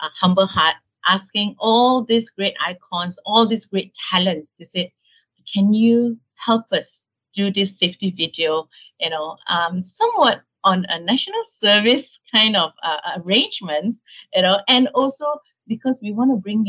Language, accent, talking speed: English, Malaysian, 155 wpm